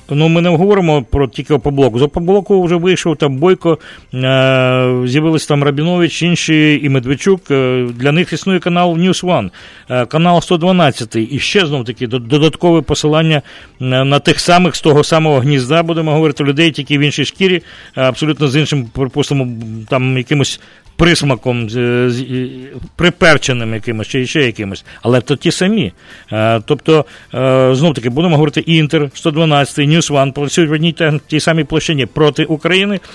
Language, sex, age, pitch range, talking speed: English, male, 40-59, 135-170 Hz, 145 wpm